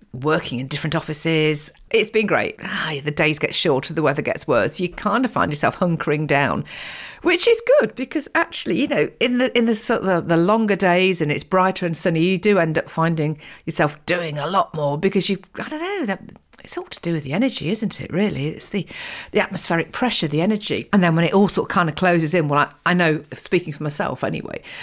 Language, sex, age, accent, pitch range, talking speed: English, female, 50-69, British, 165-215 Hz, 230 wpm